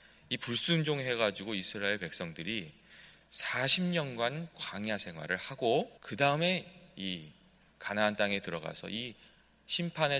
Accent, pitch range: native, 100-150 Hz